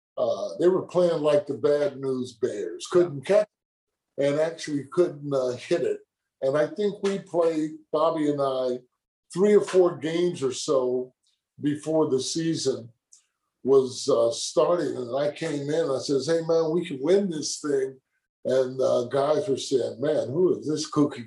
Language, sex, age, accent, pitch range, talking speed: English, male, 50-69, American, 135-175 Hz, 170 wpm